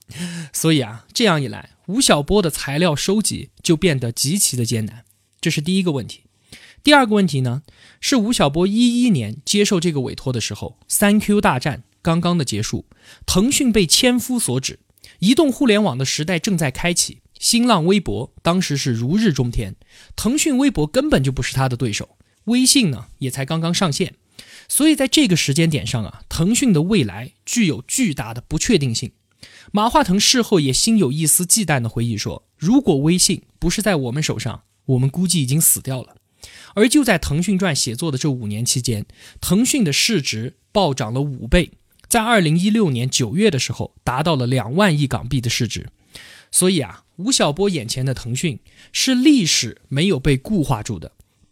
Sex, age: male, 20-39